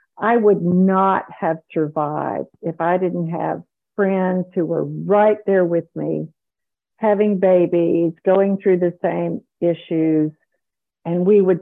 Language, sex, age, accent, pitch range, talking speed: English, female, 50-69, American, 170-210 Hz, 135 wpm